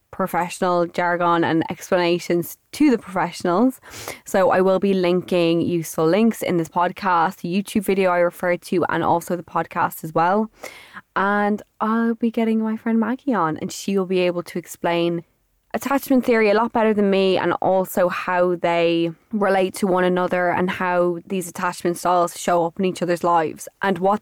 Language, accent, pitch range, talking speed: English, Irish, 170-205 Hz, 180 wpm